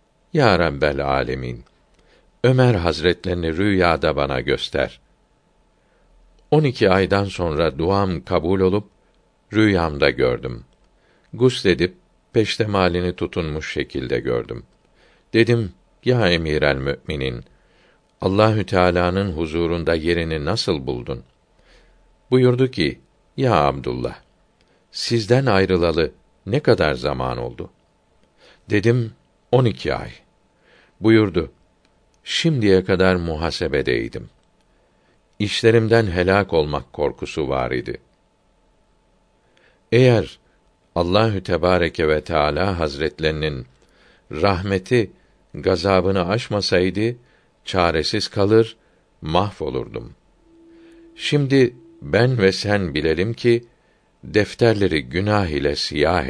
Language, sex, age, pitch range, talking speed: Turkish, male, 60-79, 85-110 Hz, 85 wpm